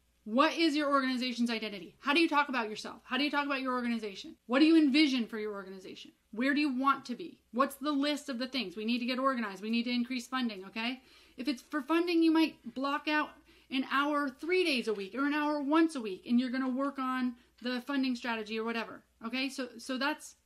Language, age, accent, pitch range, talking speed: English, 30-49, American, 230-290 Hz, 245 wpm